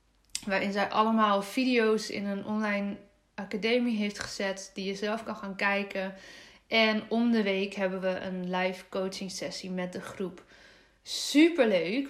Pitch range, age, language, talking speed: 200-235 Hz, 20-39, Dutch, 150 wpm